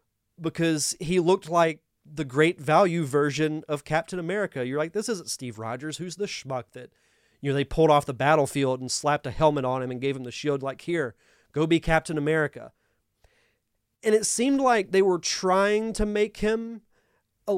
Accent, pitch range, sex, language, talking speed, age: American, 135-185 Hz, male, English, 190 wpm, 30-49